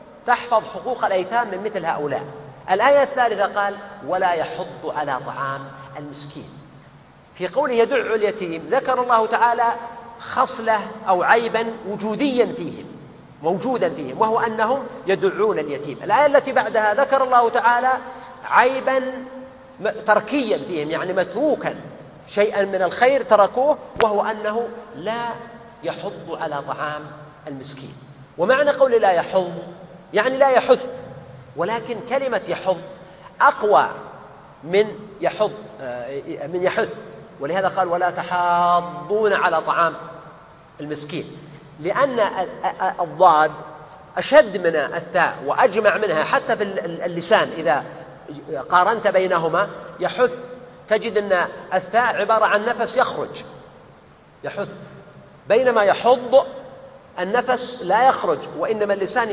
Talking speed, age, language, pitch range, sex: 105 wpm, 40-59, Arabic, 170-240 Hz, male